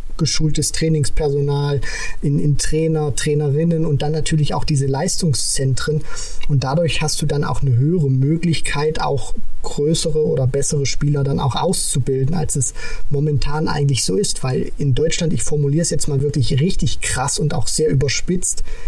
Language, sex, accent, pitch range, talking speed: German, male, German, 135-155 Hz, 160 wpm